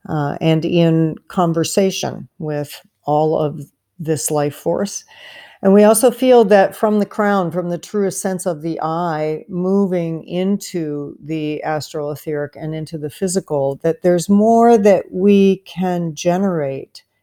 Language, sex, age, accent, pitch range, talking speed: English, female, 50-69, American, 155-185 Hz, 145 wpm